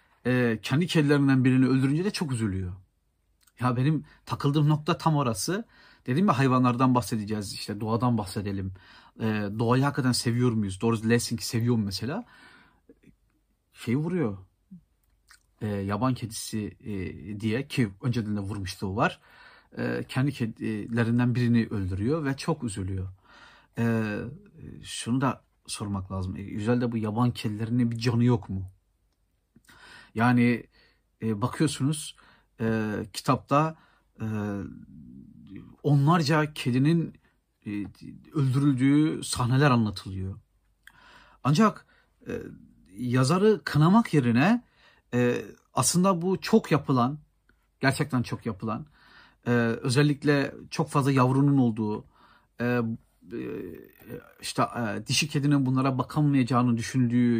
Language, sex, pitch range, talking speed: Turkish, male, 110-145 Hz, 110 wpm